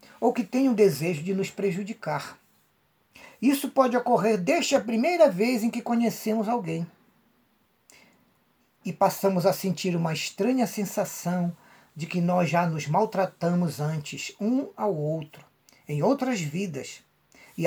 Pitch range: 150-205 Hz